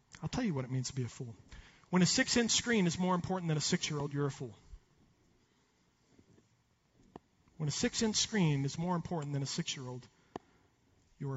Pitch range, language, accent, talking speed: 140-205 Hz, English, American, 210 wpm